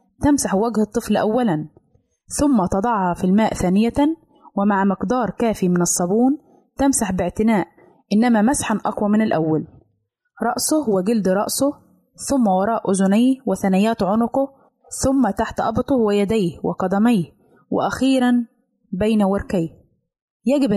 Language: Arabic